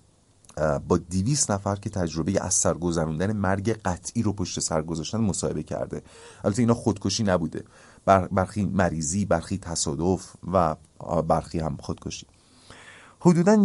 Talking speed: 120 wpm